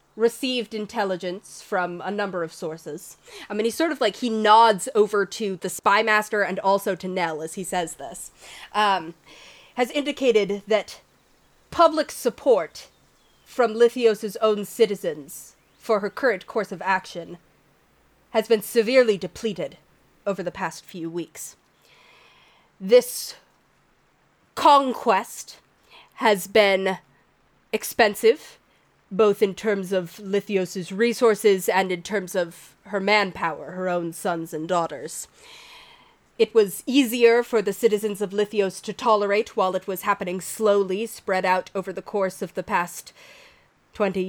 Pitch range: 185-230 Hz